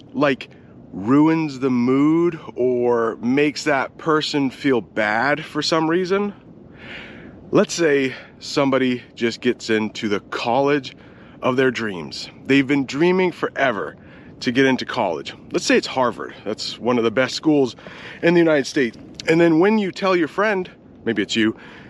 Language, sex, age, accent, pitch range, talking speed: English, male, 30-49, American, 120-165 Hz, 155 wpm